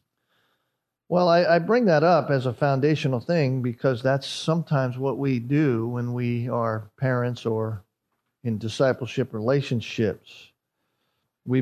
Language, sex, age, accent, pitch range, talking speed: English, male, 50-69, American, 125-150 Hz, 130 wpm